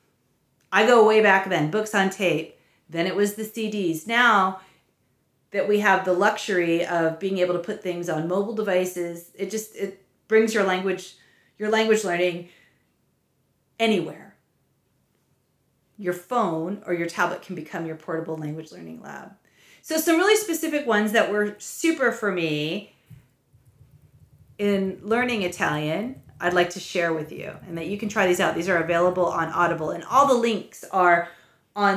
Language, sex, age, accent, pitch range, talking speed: English, female, 40-59, American, 165-210 Hz, 165 wpm